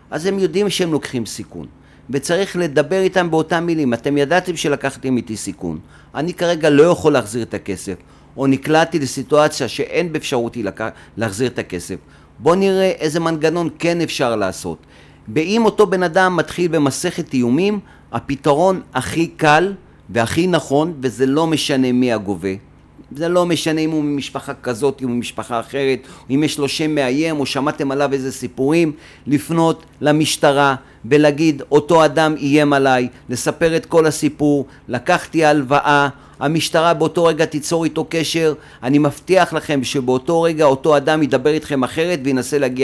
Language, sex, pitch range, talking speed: Hebrew, male, 130-165 Hz, 150 wpm